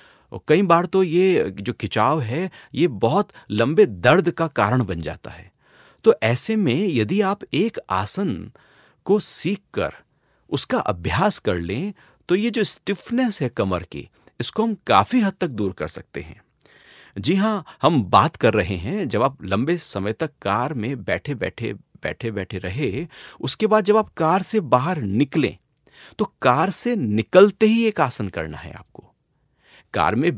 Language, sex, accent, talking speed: Hindi, male, native, 165 wpm